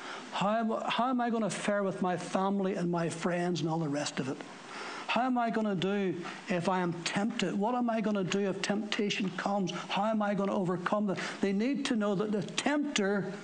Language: English